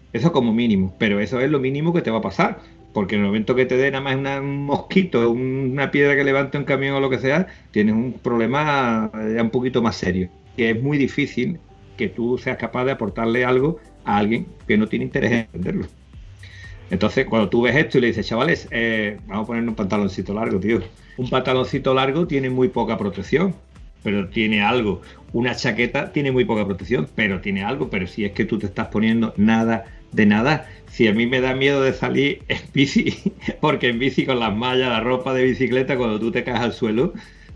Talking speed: 215 wpm